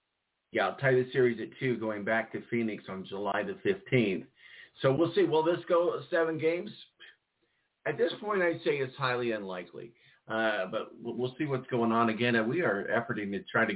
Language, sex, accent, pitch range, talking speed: English, male, American, 95-125 Hz, 200 wpm